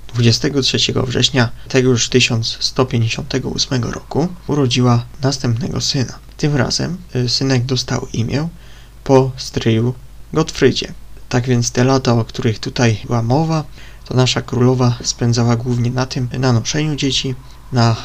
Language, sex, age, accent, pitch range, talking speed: Polish, male, 20-39, native, 120-135 Hz, 120 wpm